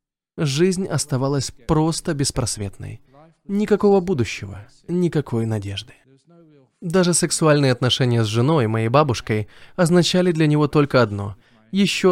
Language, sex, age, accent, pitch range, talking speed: Russian, male, 20-39, native, 115-160 Hz, 105 wpm